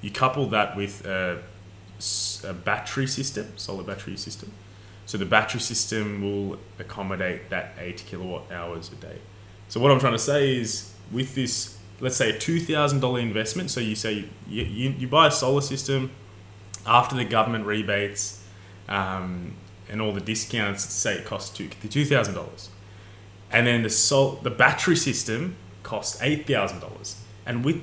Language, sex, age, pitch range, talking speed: English, male, 20-39, 100-120 Hz, 155 wpm